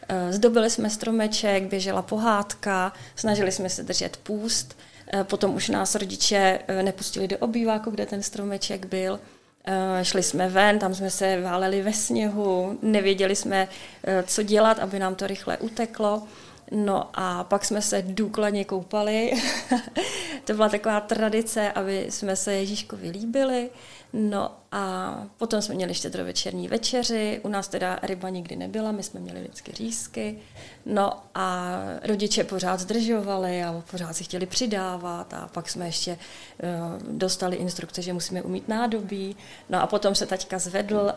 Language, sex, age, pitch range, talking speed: Czech, female, 30-49, 185-215 Hz, 145 wpm